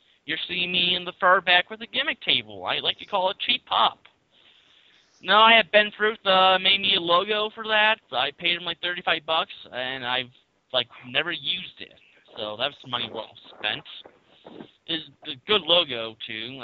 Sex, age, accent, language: male, 30-49, American, English